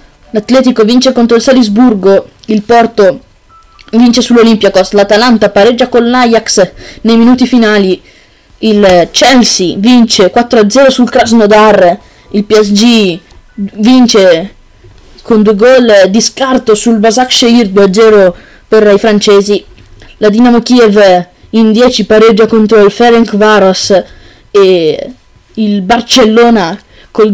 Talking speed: 110 wpm